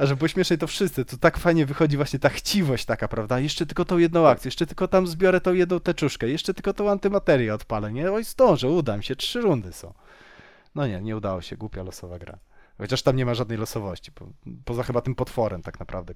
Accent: native